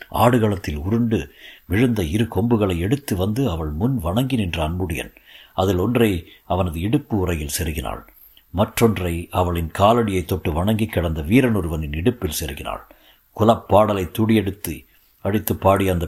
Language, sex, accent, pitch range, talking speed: Tamil, male, native, 85-115 Hz, 115 wpm